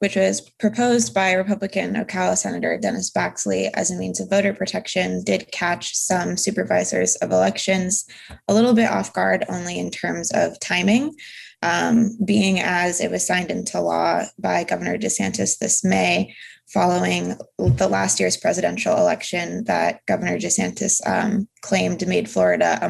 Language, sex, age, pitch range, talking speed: English, female, 20-39, 175-215 Hz, 150 wpm